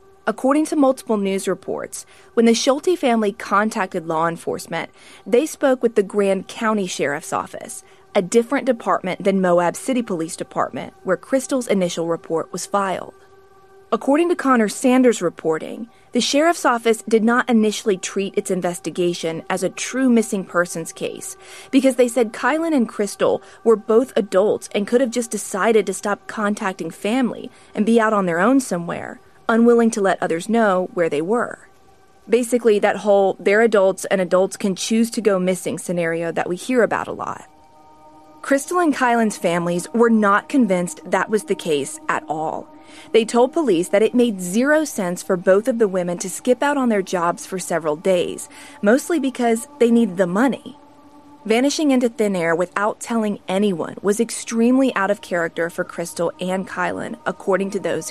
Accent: American